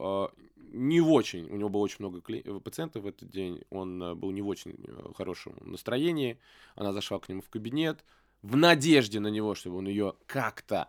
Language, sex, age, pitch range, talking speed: Russian, male, 20-39, 95-130 Hz, 175 wpm